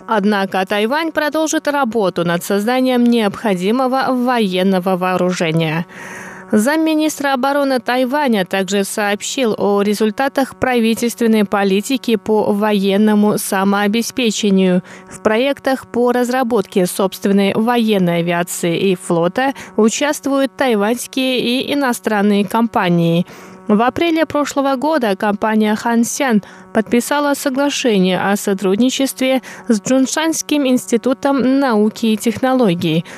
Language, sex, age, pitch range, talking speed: Russian, female, 20-39, 195-265 Hz, 95 wpm